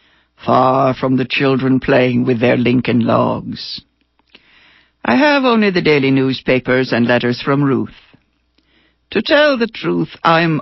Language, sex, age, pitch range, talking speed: English, female, 60-79, 120-150 Hz, 135 wpm